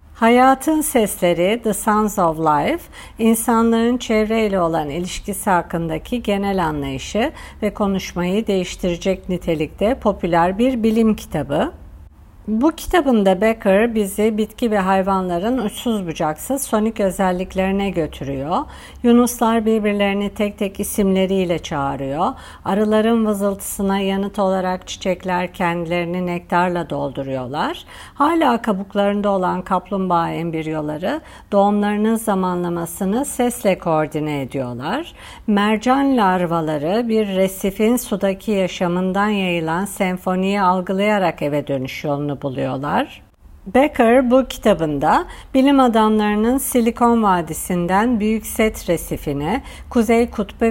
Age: 50-69